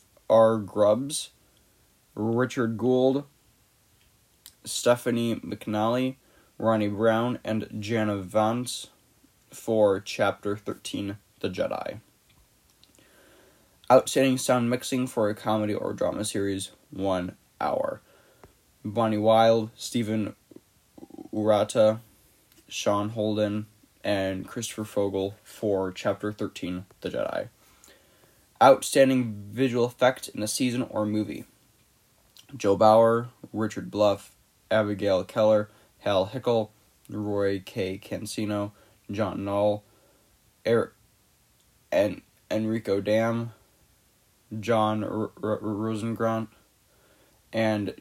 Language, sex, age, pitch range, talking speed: English, male, 20-39, 105-115 Hz, 90 wpm